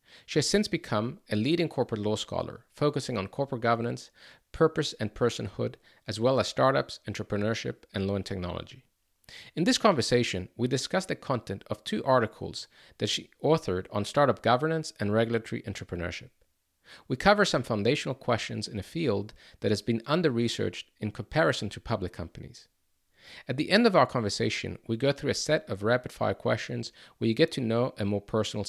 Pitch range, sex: 105-135 Hz, male